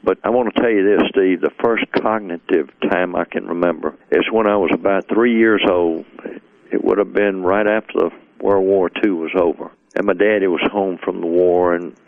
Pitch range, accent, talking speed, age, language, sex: 90-100 Hz, American, 220 wpm, 60-79, English, male